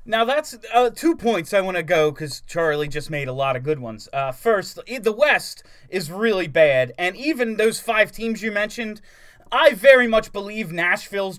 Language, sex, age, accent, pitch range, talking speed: English, male, 30-49, American, 155-220 Hz, 195 wpm